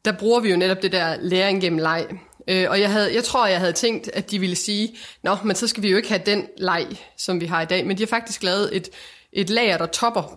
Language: Danish